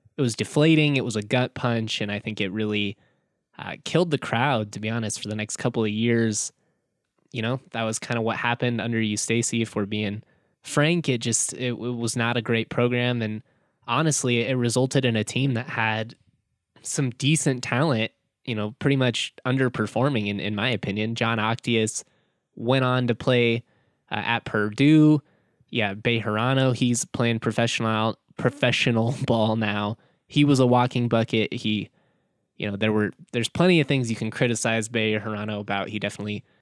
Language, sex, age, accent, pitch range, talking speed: English, male, 10-29, American, 110-125 Hz, 180 wpm